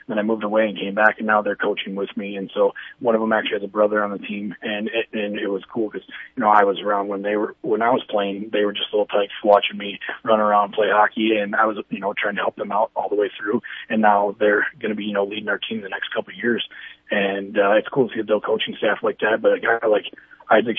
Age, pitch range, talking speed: 30-49, 100-115 Hz, 290 wpm